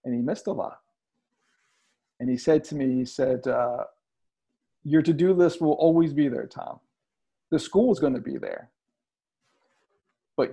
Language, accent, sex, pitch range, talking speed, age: English, American, male, 130-155 Hz, 165 wpm, 50-69